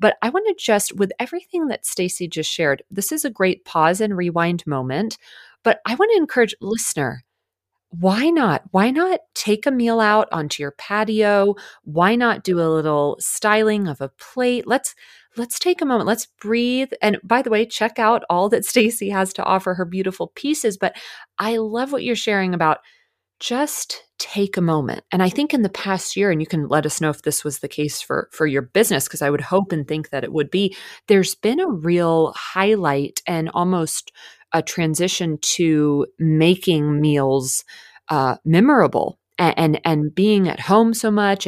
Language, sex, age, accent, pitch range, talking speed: English, female, 30-49, American, 160-220 Hz, 190 wpm